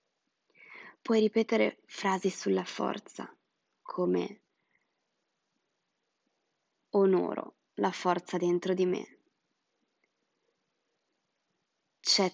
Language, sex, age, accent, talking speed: Italian, female, 20-39, native, 65 wpm